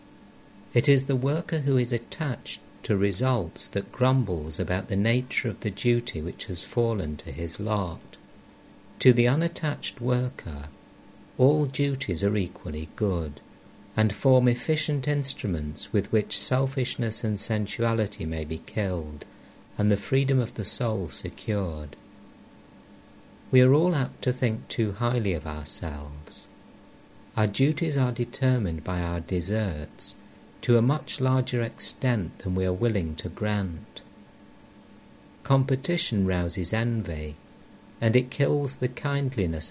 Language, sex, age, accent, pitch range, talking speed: English, male, 60-79, British, 90-125 Hz, 130 wpm